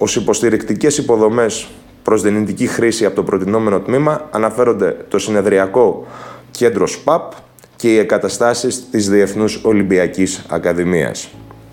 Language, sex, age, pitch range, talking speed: Greek, male, 20-39, 100-125 Hz, 115 wpm